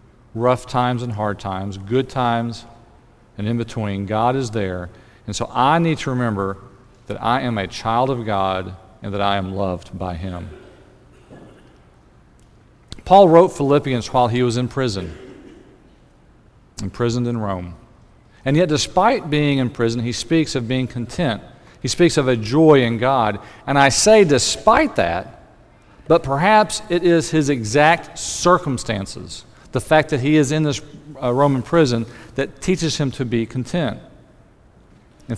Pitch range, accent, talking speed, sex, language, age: 115-145 Hz, American, 155 wpm, male, English, 40-59